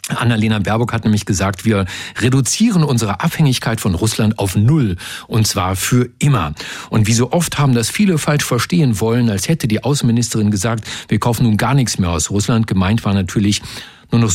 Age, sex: 50-69, male